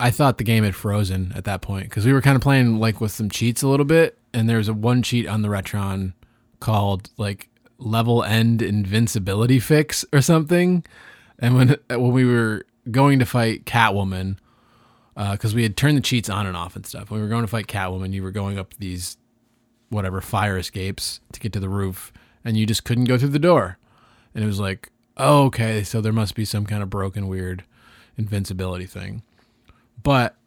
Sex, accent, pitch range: male, American, 105-120 Hz